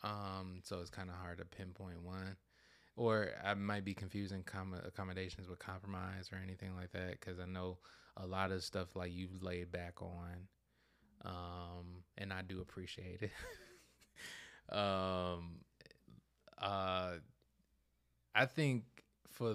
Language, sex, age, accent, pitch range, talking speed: English, male, 20-39, American, 90-100 Hz, 140 wpm